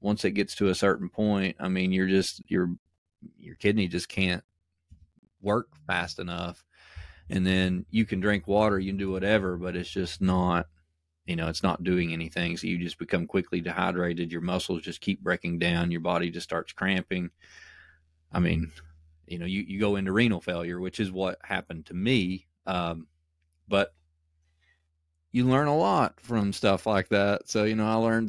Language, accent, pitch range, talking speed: English, American, 85-100 Hz, 185 wpm